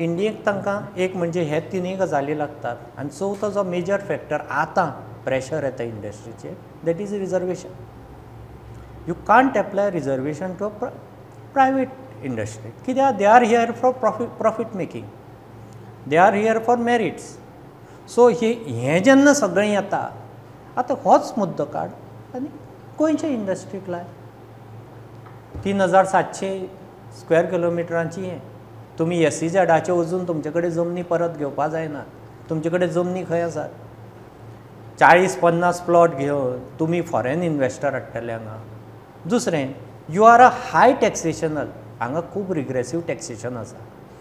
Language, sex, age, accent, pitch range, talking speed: English, male, 50-69, Indian, 130-200 Hz, 100 wpm